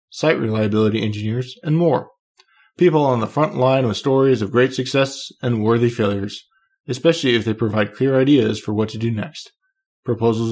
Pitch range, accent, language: 110-135 Hz, American, English